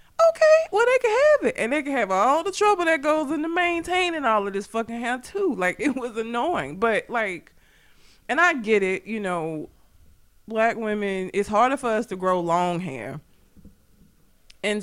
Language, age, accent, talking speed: English, 20-39, American, 185 wpm